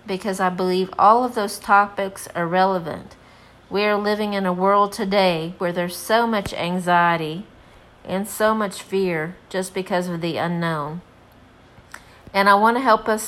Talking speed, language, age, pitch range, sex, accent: 160 wpm, English, 50-69, 180-210 Hz, female, American